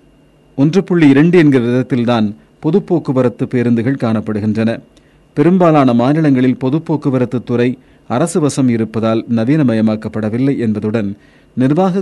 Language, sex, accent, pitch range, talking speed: Tamil, male, native, 115-145 Hz, 75 wpm